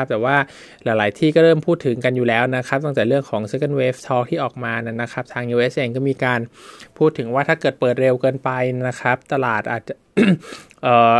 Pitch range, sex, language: 120-140 Hz, male, Thai